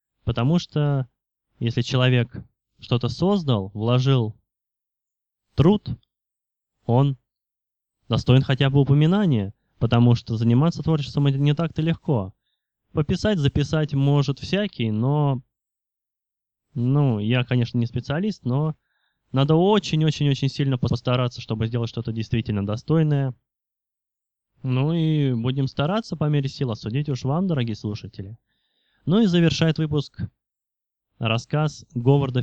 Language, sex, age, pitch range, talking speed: Russian, male, 20-39, 110-145 Hz, 110 wpm